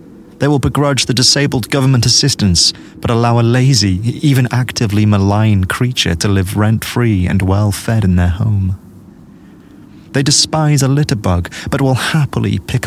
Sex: male